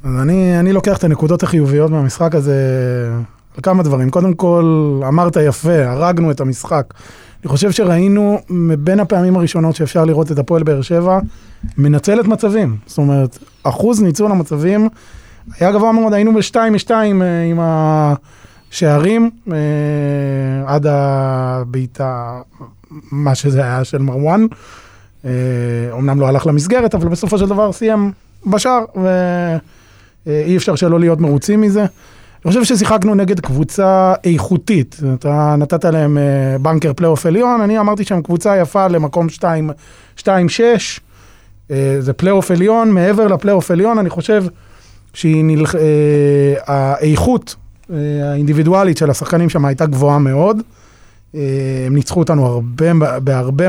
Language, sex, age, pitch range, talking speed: Hebrew, male, 20-39, 135-185 Hz, 120 wpm